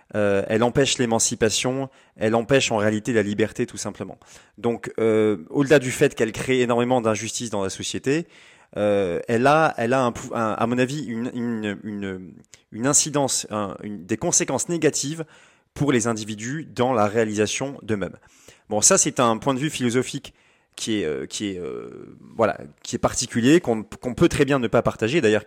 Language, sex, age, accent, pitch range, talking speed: French, male, 30-49, French, 105-130 Hz, 180 wpm